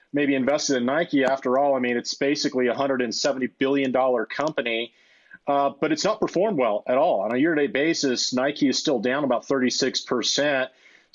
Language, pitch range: English, 130-150 Hz